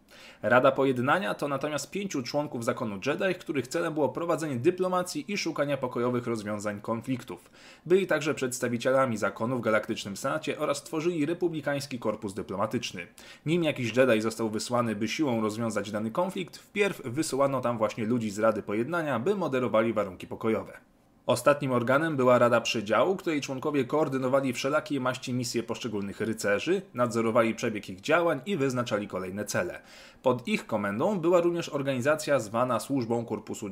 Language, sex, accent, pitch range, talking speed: Polish, male, native, 115-155 Hz, 145 wpm